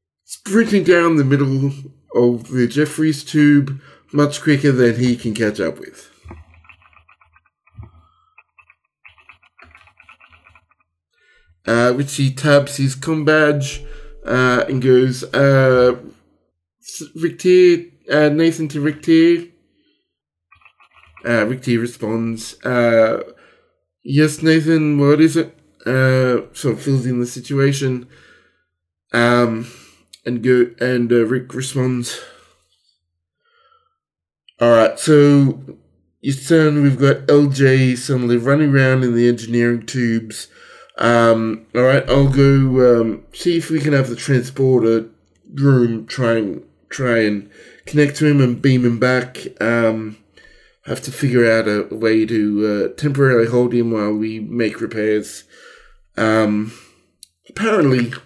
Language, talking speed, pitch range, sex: English, 115 wpm, 115-145 Hz, male